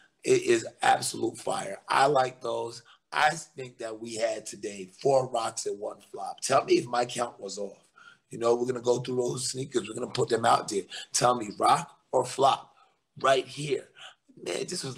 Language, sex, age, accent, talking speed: English, male, 30-49, American, 205 wpm